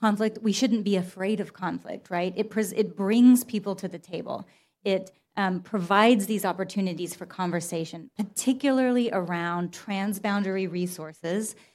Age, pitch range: 30-49, 180-215 Hz